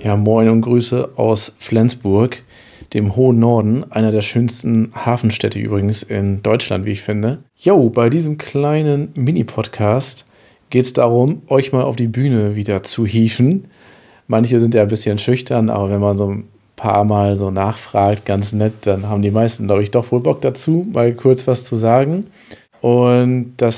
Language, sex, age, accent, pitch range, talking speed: German, male, 40-59, German, 105-120 Hz, 175 wpm